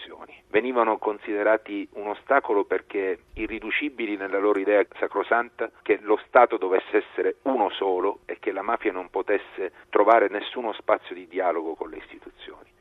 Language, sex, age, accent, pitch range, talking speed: Italian, male, 40-59, native, 300-435 Hz, 145 wpm